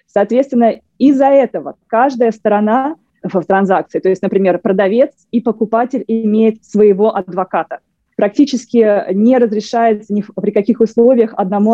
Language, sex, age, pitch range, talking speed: English, female, 20-39, 195-230 Hz, 125 wpm